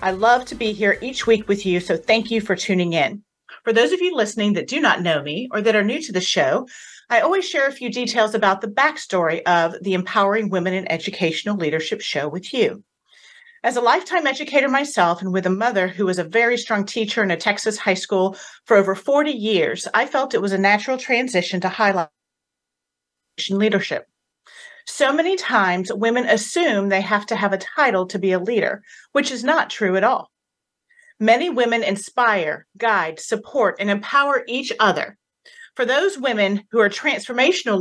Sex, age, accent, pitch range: female, 40-59, American, 190-250 Hz